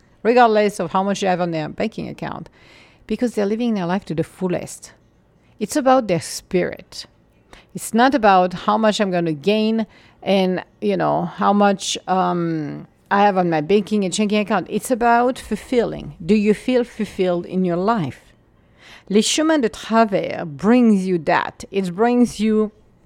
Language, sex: English, female